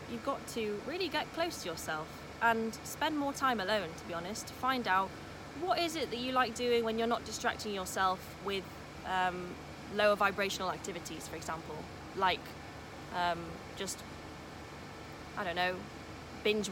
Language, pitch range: English, 195-235 Hz